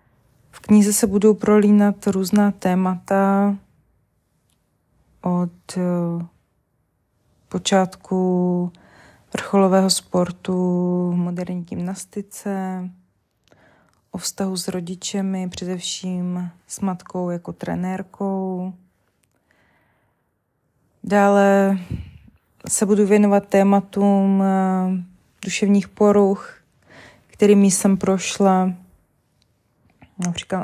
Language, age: Czech, 20-39